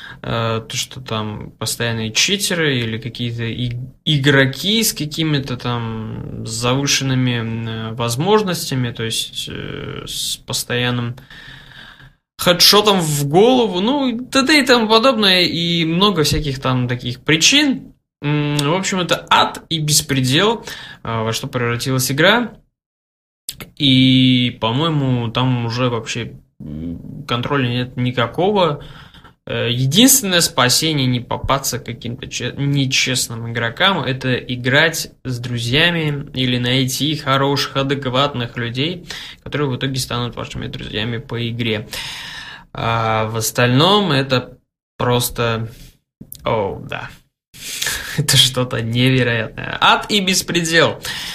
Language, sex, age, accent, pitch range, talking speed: Russian, male, 20-39, native, 120-165 Hz, 105 wpm